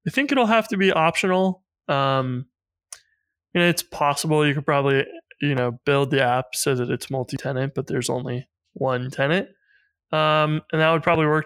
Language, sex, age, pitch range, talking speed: English, male, 20-39, 135-165 Hz, 185 wpm